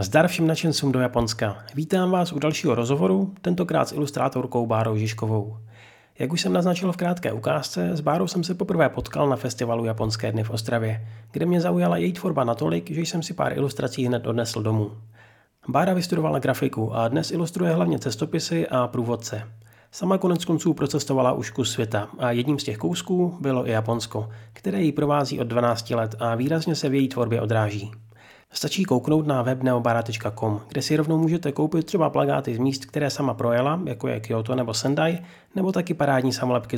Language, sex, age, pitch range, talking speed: Czech, male, 30-49, 110-155 Hz, 180 wpm